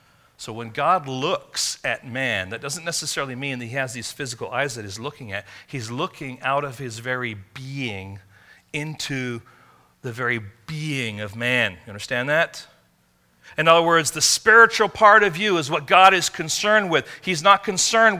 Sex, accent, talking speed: male, American, 175 wpm